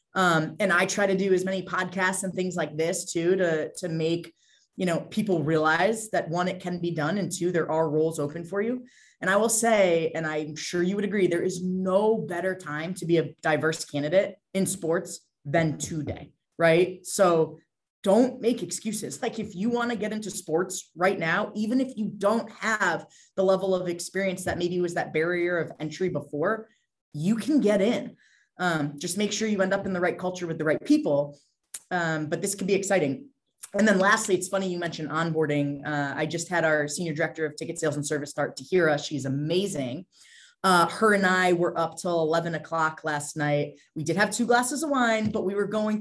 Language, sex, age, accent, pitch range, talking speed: English, female, 20-39, American, 160-200 Hz, 215 wpm